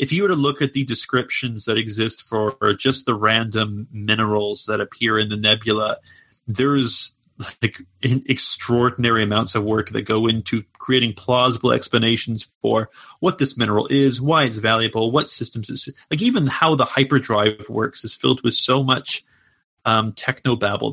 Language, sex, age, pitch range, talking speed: English, male, 30-49, 105-130 Hz, 165 wpm